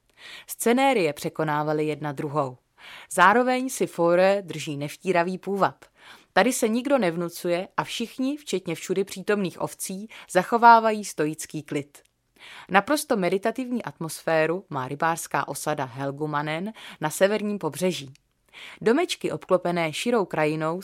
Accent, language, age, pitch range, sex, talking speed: native, Czech, 30-49, 150-200 Hz, female, 105 wpm